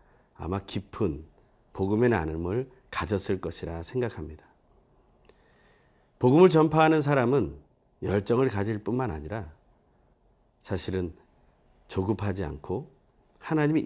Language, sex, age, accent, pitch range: Korean, male, 40-59, native, 95-145 Hz